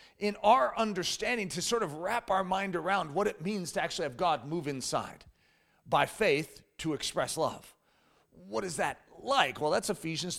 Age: 40-59